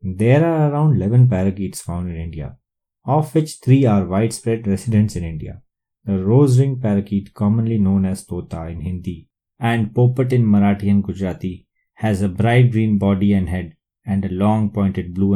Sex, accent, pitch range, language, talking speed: male, Indian, 95-120 Hz, English, 170 wpm